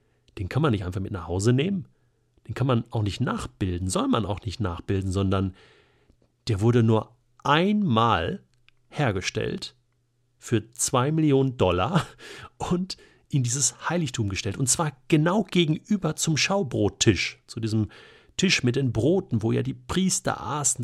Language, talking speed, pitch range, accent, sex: German, 150 wpm, 105-130 Hz, German, male